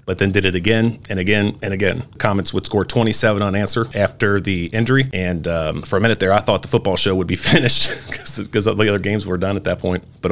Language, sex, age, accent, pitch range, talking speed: English, male, 40-59, American, 95-110 Hz, 245 wpm